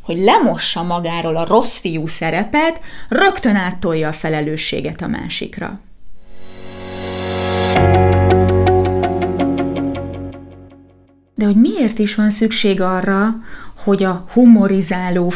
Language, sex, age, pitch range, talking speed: Hungarian, female, 30-49, 165-205 Hz, 85 wpm